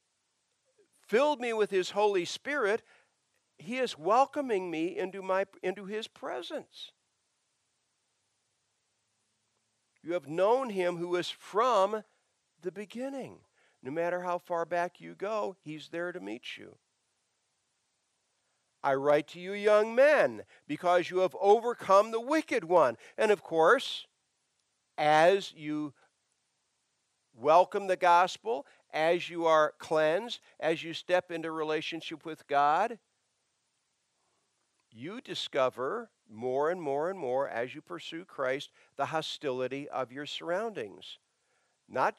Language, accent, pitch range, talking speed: English, American, 140-190 Hz, 120 wpm